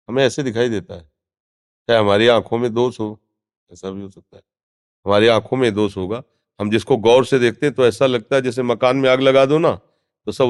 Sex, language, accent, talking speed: male, Hindi, native, 230 wpm